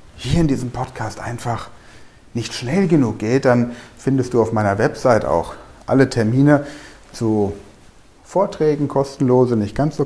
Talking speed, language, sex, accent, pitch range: 145 wpm, German, male, German, 110-145 Hz